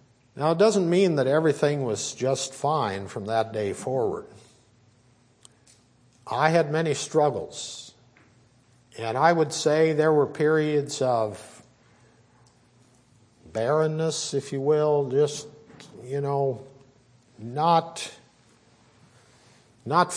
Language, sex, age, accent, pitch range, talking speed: English, male, 50-69, American, 115-145 Hz, 100 wpm